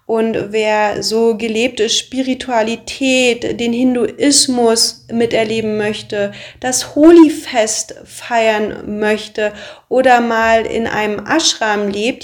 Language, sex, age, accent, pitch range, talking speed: English, female, 30-49, German, 205-235 Hz, 95 wpm